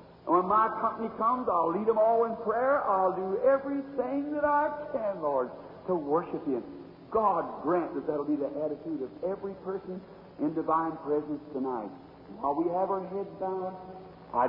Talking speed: 180 wpm